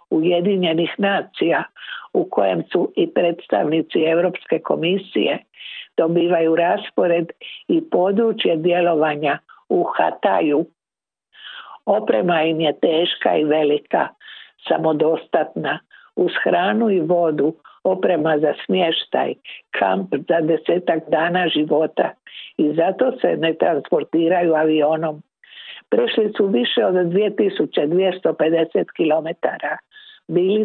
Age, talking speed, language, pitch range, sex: 60-79, 90 wpm, Croatian, 160-195 Hz, female